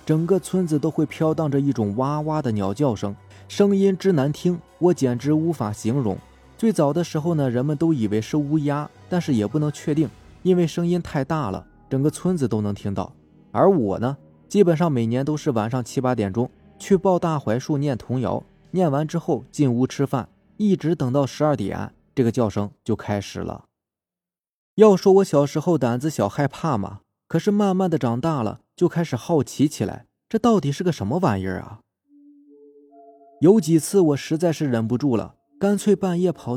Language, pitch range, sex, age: Chinese, 120-175 Hz, male, 20-39